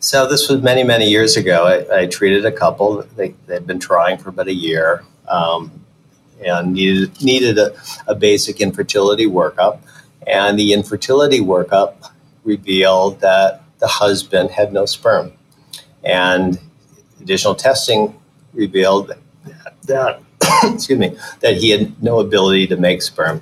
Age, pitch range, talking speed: 50-69, 95-140 Hz, 135 wpm